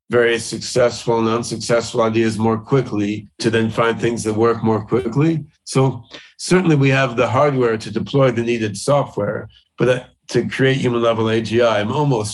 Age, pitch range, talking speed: 40-59, 110-130 Hz, 165 wpm